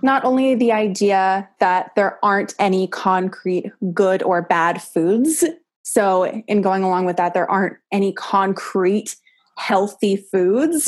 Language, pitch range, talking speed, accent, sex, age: English, 190-230 Hz, 140 wpm, American, female, 20-39